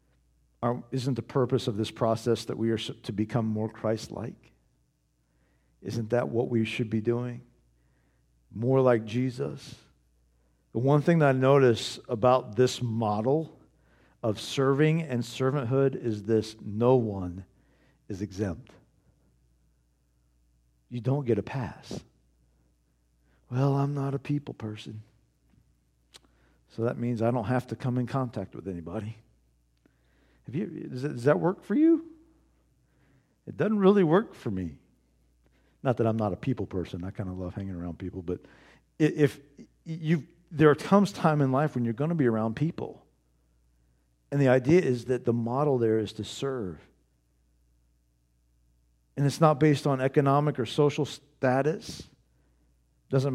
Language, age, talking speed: English, 50-69, 140 wpm